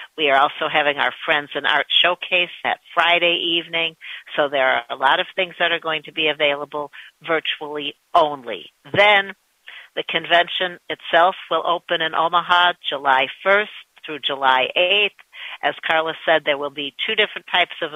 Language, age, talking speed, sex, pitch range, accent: English, 60-79, 165 wpm, female, 150-175 Hz, American